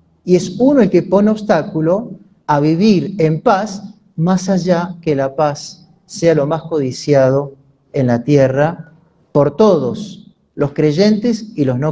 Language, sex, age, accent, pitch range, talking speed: Spanish, male, 40-59, Argentinian, 155-210 Hz, 150 wpm